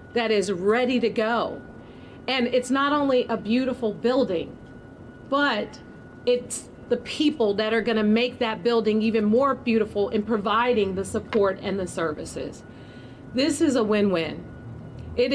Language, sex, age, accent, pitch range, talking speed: English, female, 40-59, American, 205-245 Hz, 150 wpm